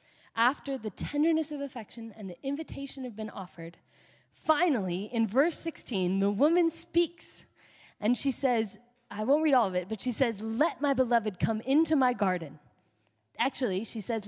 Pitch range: 210-295 Hz